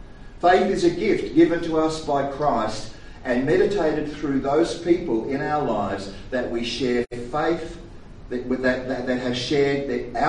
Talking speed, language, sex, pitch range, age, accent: 165 wpm, English, male, 110-155 Hz, 50-69, Australian